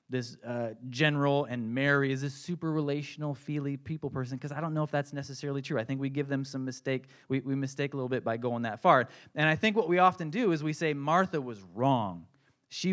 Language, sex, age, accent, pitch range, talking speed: English, male, 20-39, American, 125-160 Hz, 235 wpm